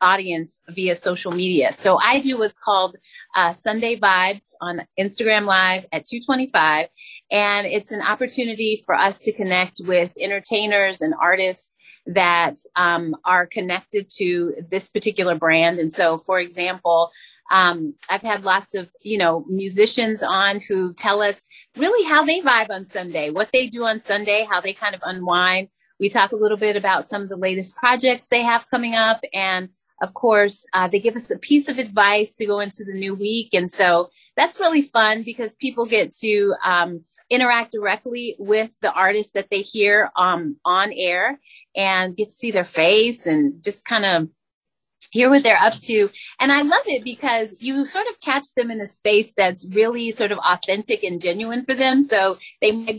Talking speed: 185 wpm